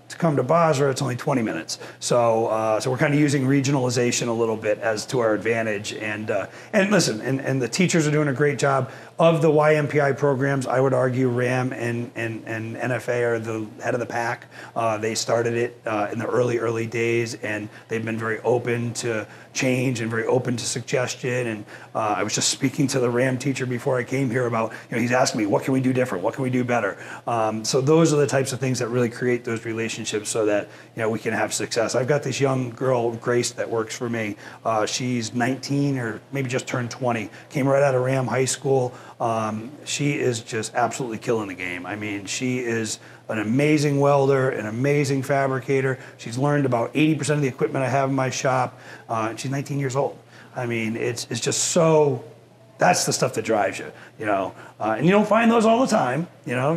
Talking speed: 225 wpm